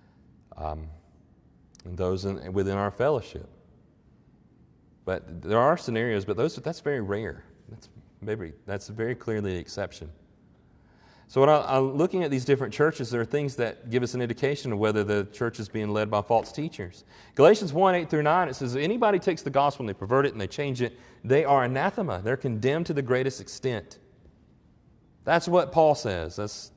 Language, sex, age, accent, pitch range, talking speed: English, male, 30-49, American, 105-145 Hz, 185 wpm